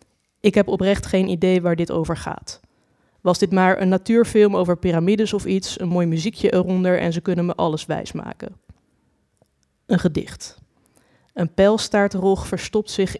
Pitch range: 175-210 Hz